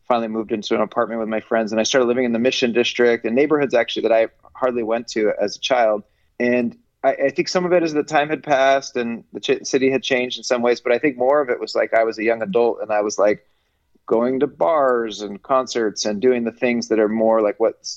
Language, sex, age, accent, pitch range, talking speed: English, male, 30-49, American, 110-135 Hz, 265 wpm